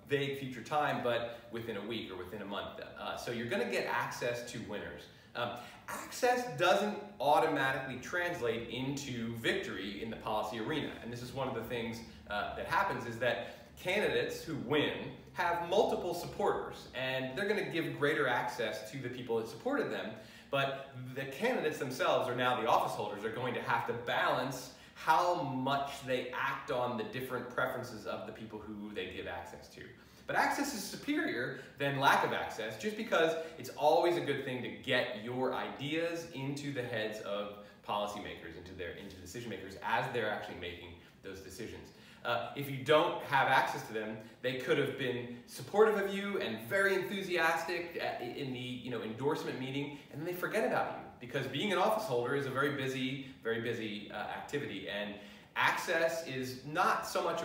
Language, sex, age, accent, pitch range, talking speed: English, male, 30-49, American, 115-160 Hz, 185 wpm